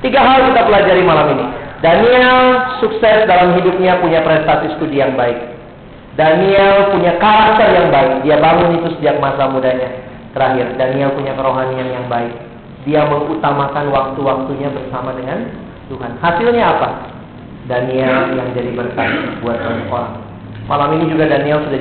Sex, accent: male, native